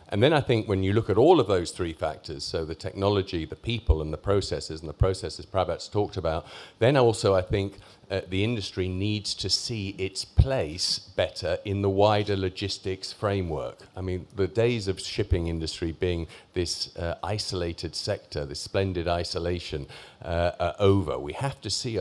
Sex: male